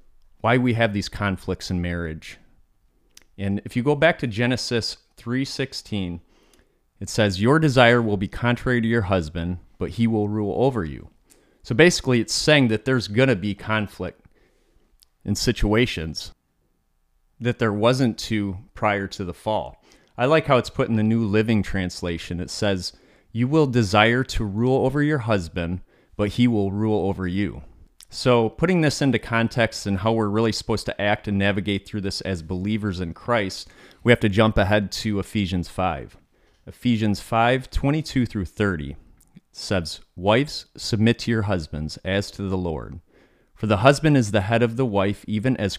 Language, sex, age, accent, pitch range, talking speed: English, male, 30-49, American, 95-120 Hz, 170 wpm